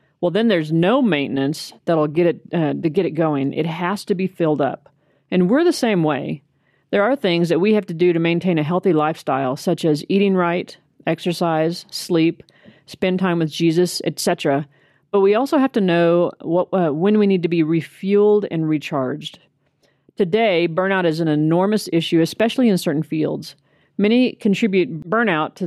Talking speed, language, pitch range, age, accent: 180 wpm, English, 155-200 Hz, 40-59, American